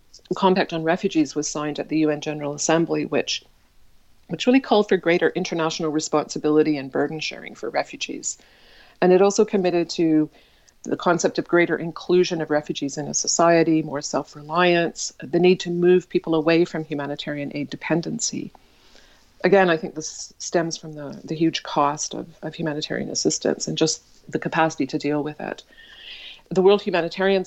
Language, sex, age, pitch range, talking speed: English, female, 40-59, 150-175 Hz, 165 wpm